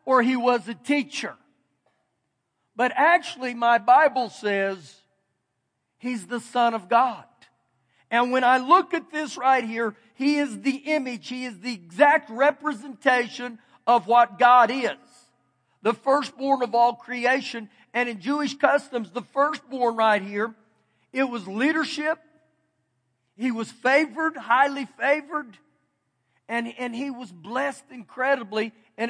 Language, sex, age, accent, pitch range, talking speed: English, male, 50-69, American, 215-260 Hz, 130 wpm